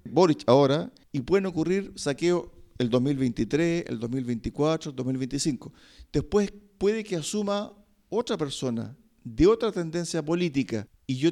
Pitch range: 125-170 Hz